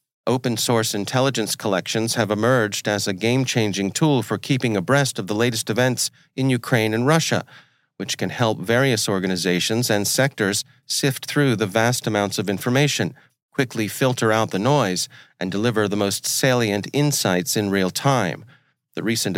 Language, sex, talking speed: English, male, 155 wpm